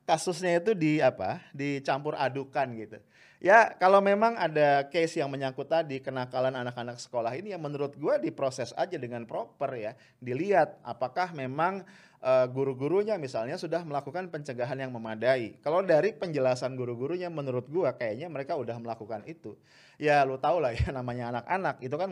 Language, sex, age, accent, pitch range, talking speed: English, male, 30-49, Indonesian, 130-175 Hz, 155 wpm